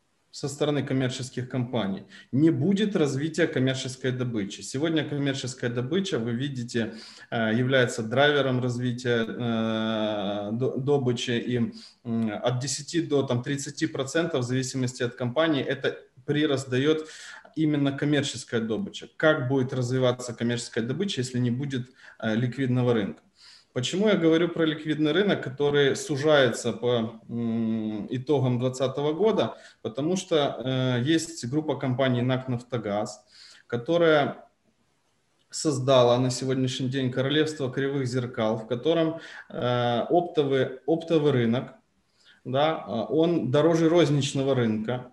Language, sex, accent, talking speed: Ukrainian, male, native, 105 wpm